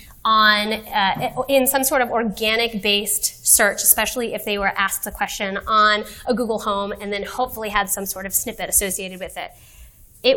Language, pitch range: English, 205-275 Hz